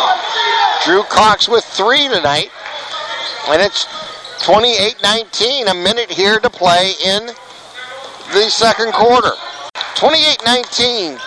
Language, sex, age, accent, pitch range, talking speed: English, male, 50-69, American, 200-250 Hz, 95 wpm